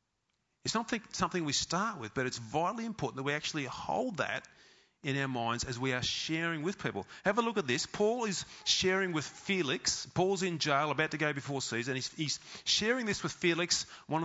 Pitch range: 135-185 Hz